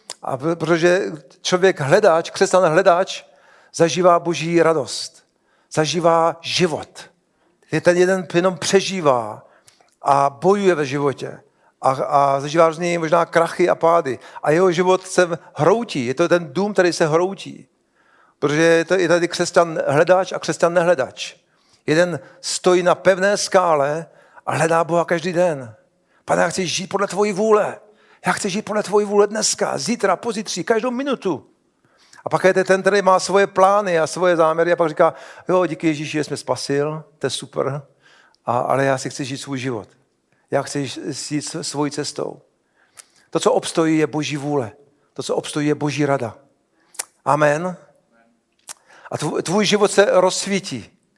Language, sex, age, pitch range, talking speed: Czech, male, 50-69, 150-185 Hz, 155 wpm